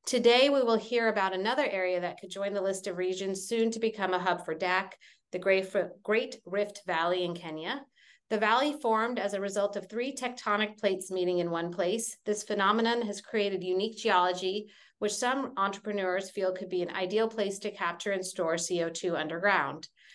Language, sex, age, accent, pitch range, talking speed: English, female, 30-49, American, 180-220 Hz, 185 wpm